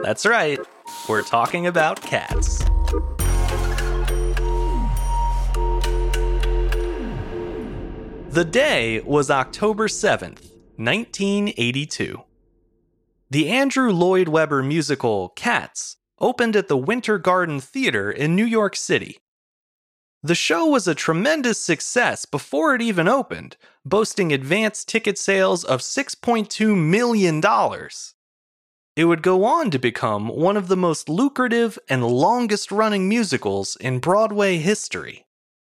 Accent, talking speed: American, 105 wpm